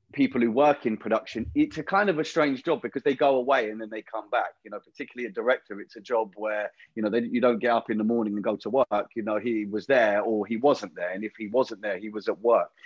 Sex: male